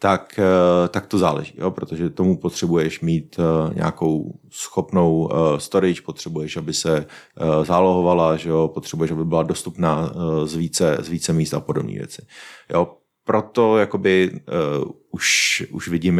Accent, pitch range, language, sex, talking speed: native, 80-90 Hz, Czech, male, 150 wpm